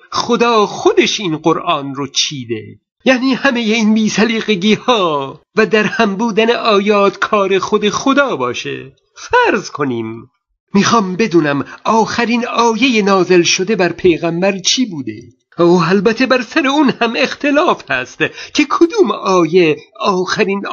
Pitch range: 175-230 Hz